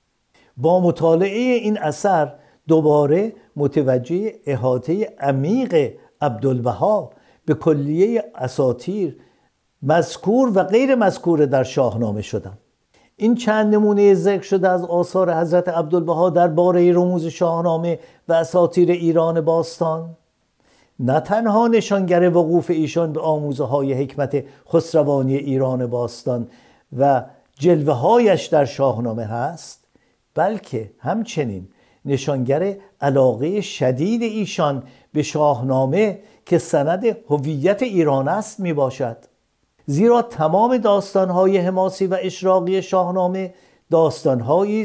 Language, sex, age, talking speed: Persian, male, 50-69, 100 wpm